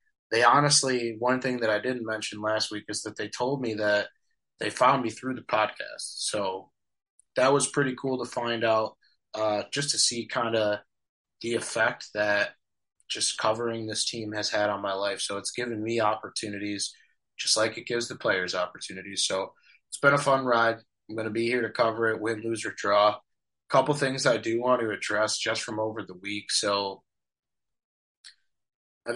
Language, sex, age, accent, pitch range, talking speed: English, male, 20-39, American, 100-125 Hz, 190 wpm